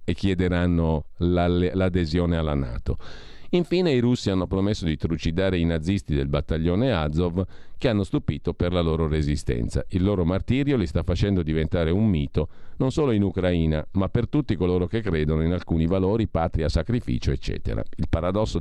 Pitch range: 80-110 Hz